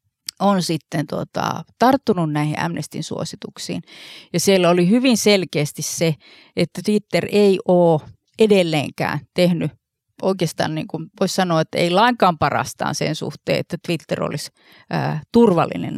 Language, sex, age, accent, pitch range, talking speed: Finnish, female, 30-49, native, 160-205 Hz, 115 wpm